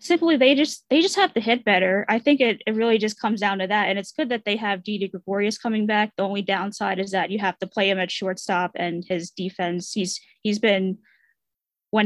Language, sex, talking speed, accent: English, female, 240 wpm, American